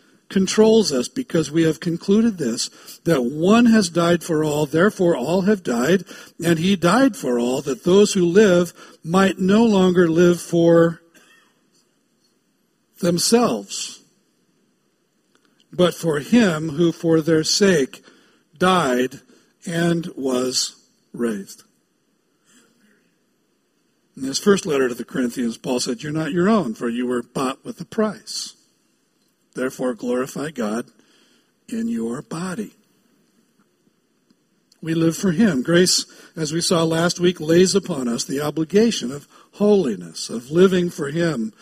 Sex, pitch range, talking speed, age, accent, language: male, 160-210 Hz, 130 wpm, 60-79, American, English